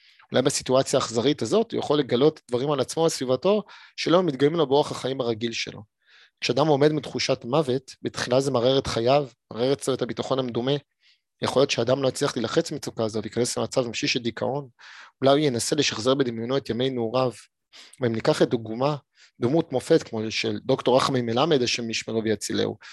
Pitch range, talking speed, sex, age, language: 115-145 Hz, 155 wpm, male, 30-49, Hebrew